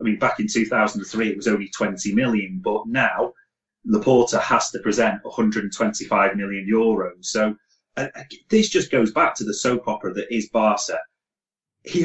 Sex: male